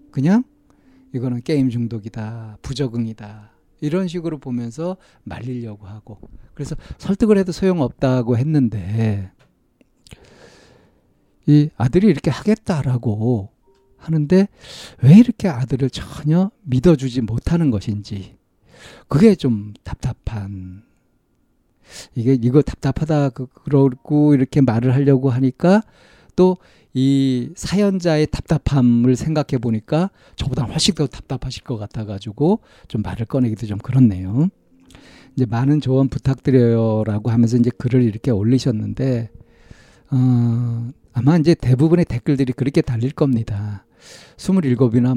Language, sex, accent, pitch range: Korean, male, native, 115-150 Hz